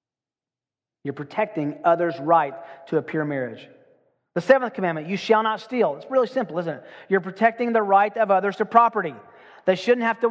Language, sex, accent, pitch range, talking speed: English, male, American, 145-200 Hz, 185 wpm